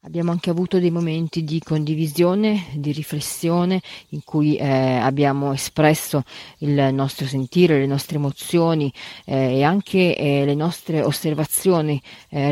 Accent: native